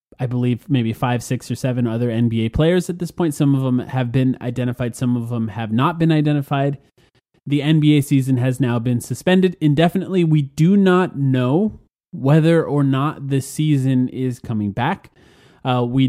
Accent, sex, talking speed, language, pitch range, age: American, male, 180 wpm, English, 120-155 Hz, 20-39